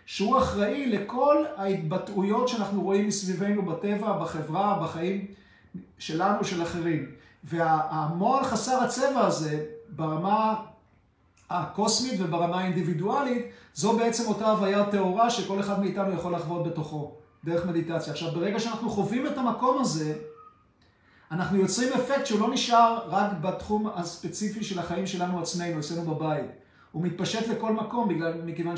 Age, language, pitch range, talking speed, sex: 50-69, Hebrew, 170-215 Hz, 130 wpm, male